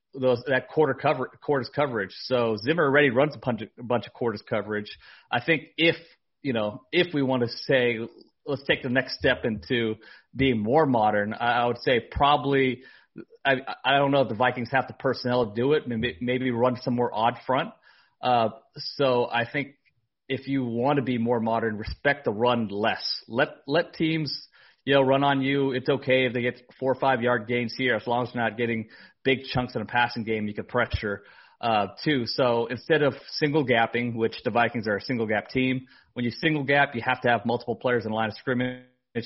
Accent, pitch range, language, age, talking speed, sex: American, 115-135 Hz, English, 30-49, 210 wpm, male